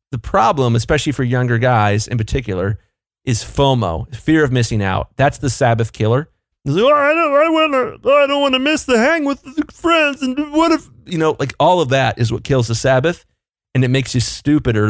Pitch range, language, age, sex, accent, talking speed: 115-175 Hz, English, 30-49, male, American, 200 wpm